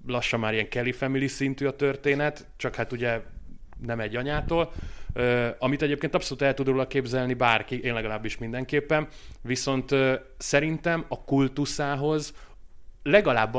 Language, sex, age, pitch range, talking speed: Hungarian, male, 30-49, 115-140 Hz, 135 wpm